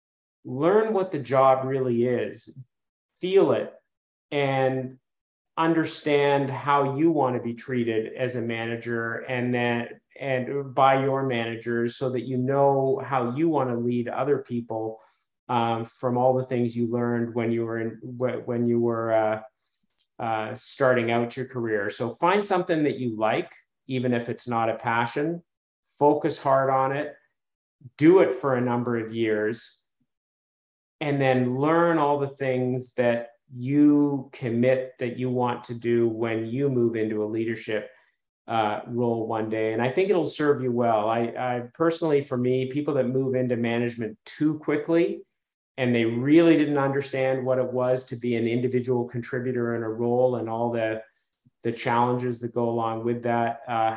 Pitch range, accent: 115-135 Hz, American